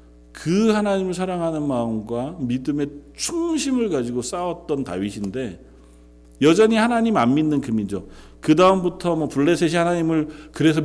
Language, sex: Korean, male